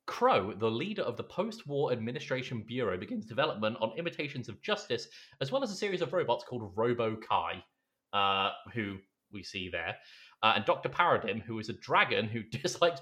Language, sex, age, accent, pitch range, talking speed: English, male, 30-49, British, 100-130 Hz, 175 wpm